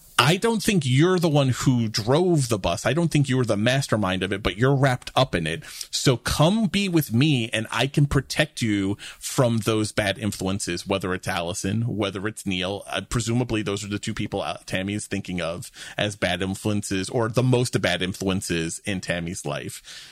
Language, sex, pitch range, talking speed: English, male, 105-150 Hz, 200 wpm